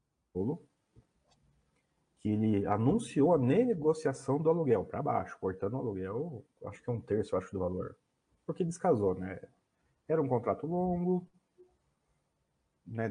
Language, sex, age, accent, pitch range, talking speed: Portuguese, male, 40-59, Brazilian, 100-140 Hz, 130 wpm